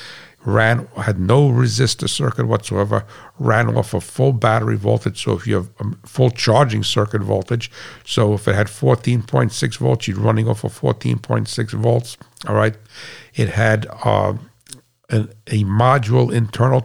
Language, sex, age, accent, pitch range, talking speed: English, male, 60-79, American, 105-120 Hz, 155 wpm